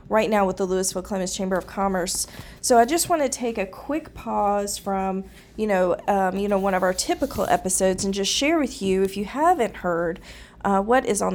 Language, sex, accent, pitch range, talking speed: English, female, American, 195-235 Hz, 215 wpm